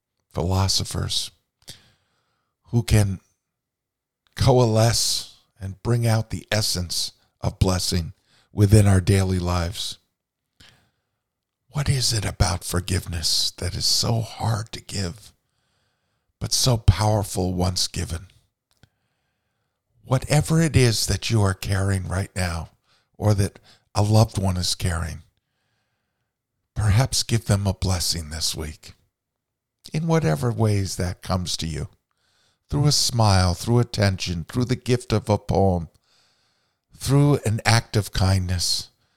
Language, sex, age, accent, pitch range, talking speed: English, male, 50-69, American, 90-120 Hz, 120 wpm